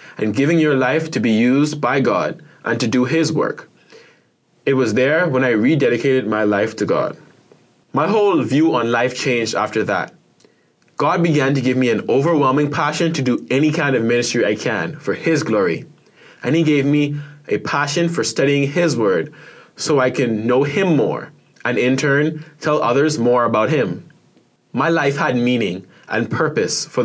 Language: English